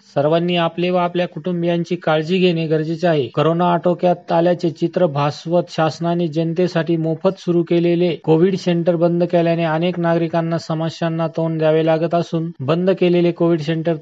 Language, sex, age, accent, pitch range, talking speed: Marathi, male, 40-59, native, 165-180 Hz, 145 wpm